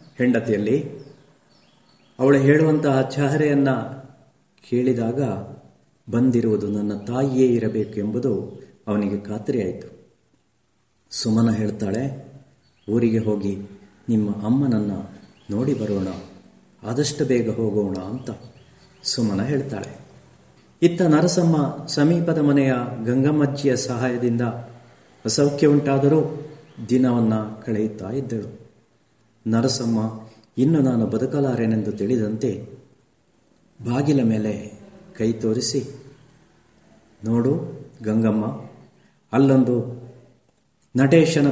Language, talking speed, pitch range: Kannada, 70 wpm, 110-140 Hz